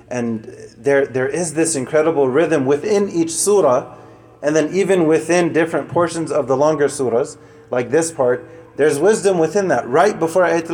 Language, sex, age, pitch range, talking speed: English, male, 30-49, 140-170 Hz, 170 wpm